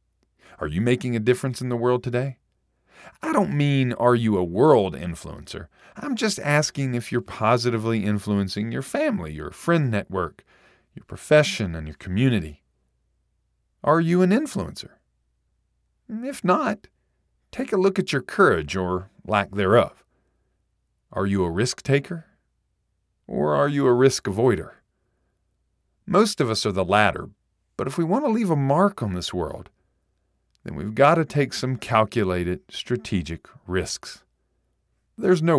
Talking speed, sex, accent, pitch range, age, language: 150 wpm, male, American, 95-145 Hz, 40-59, English